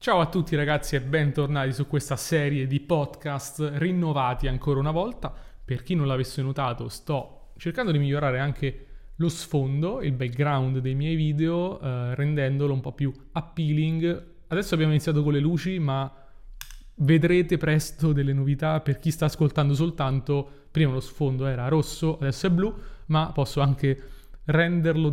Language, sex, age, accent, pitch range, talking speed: Italian, male, 20-39, native, 135-160 Hz, 160 wpm